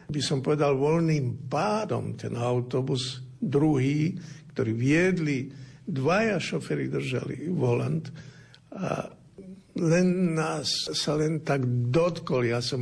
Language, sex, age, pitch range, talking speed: Slovak, male, 60-79, 115-140 Hz, 110 wpm